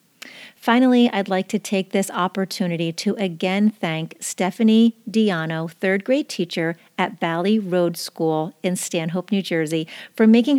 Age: 50-69